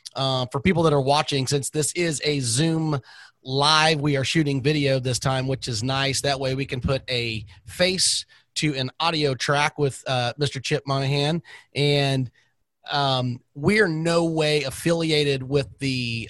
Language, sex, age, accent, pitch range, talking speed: English, male, 30-49, American, 130-155 Hz, 175 wpm